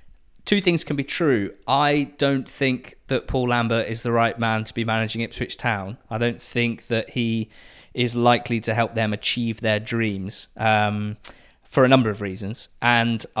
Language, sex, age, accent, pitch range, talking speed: English, male, 20-39, British, 110-125 Hz, 180 wpm